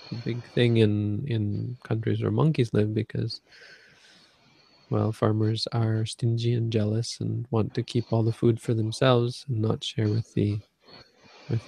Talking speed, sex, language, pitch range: 155 wpm, male, English, 110-125 Hz